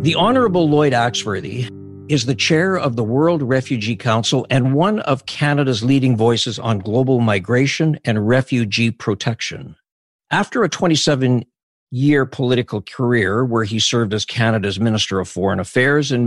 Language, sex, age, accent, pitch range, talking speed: English, male, 50-69, American, 115-150 Hz, 145 wpm